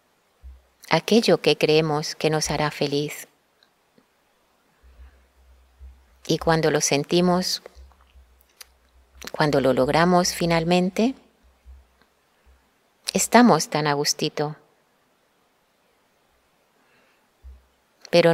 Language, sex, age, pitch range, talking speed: Spanish, female, 30-49, 145-170 Hz, 60 wpm